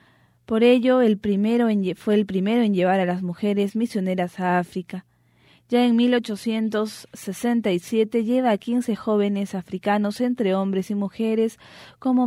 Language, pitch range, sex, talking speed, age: English, 185-220 Hz, female, 140 wpm, 20-39